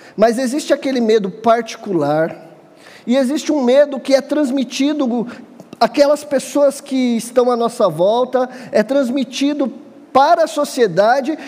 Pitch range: 210-275 Hz